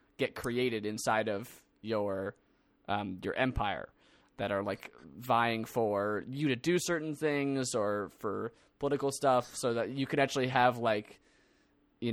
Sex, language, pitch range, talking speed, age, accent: male, English, 115-140 Hz, 150 wpm, 20-39, American